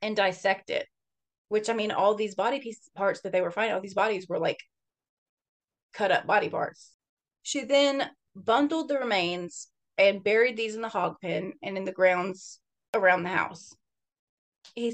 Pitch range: 190-240 Hz